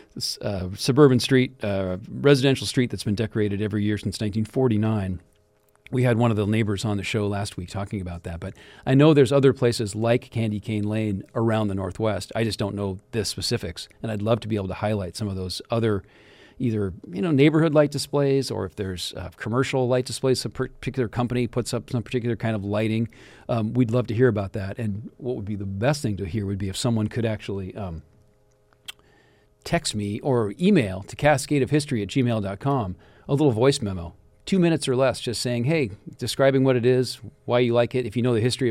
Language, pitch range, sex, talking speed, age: English, 105-130 Hz, male, 210 wpm, 40-59